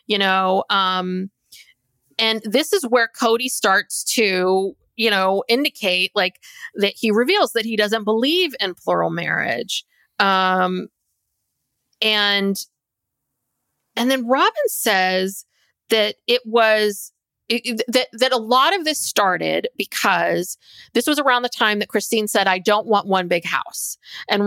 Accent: American